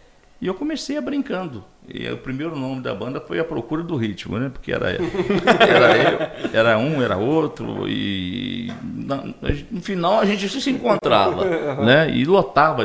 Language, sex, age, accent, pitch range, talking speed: Portuguese, male, 50-69, Brazilian, 95-160 Hz, 160 wpm